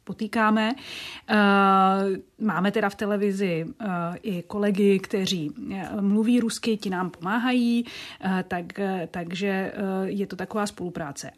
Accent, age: native, 30-49